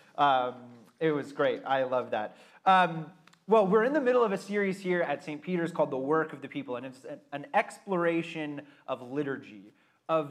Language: English